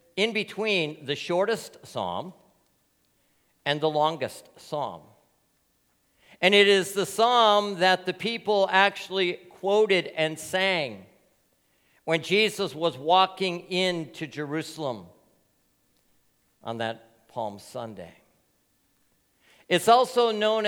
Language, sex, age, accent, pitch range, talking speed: English, male, 50-69, American, 140-205 Hz, 100 wpm